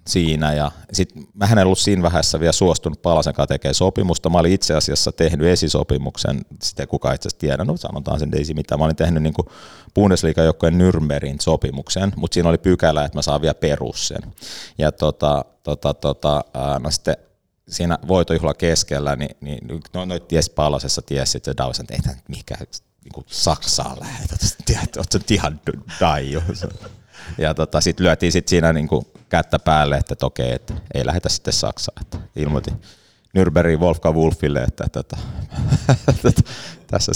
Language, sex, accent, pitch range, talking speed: Finnish, male, native, 75-90 Hz, 150 wpm